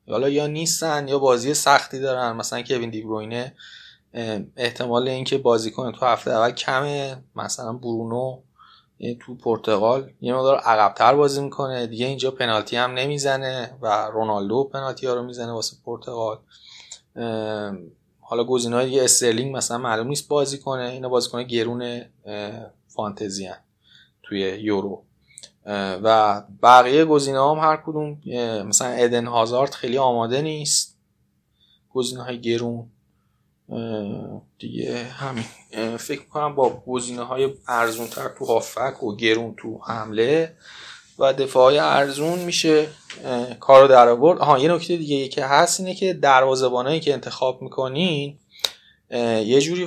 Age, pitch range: 20-39, 115-140 Hz